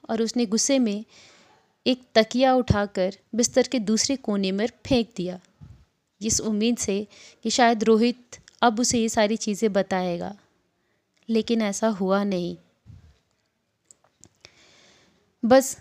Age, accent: 30-49, native